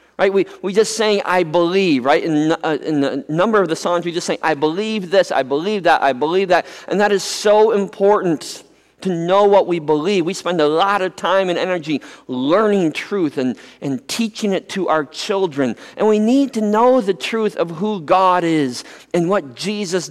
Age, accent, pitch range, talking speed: 50-69, American, 150-205 Hz, 205 wpm